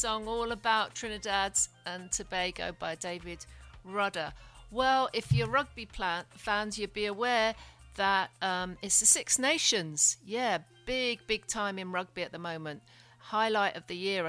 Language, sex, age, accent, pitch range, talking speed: English, female, 50-69, British, 160-210 Hz, 155 wpm